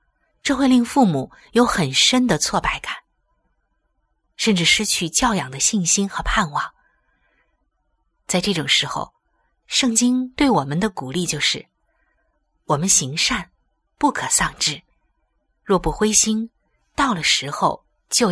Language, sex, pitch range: Chinese, female, 155-230 Hz